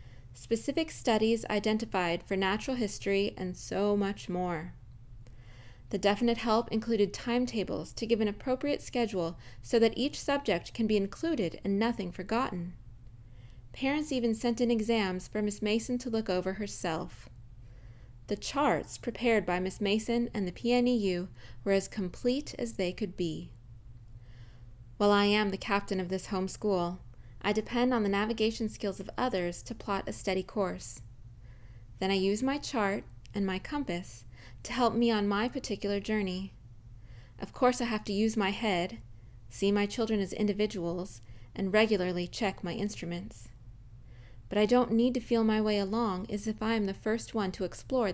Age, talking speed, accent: 20-39, 165 wpm, American